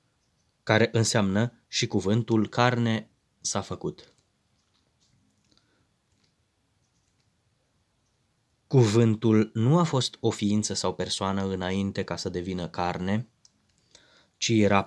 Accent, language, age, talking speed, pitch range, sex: native, Romanian, 20-39, 90 wpm, 100-125 Hz, male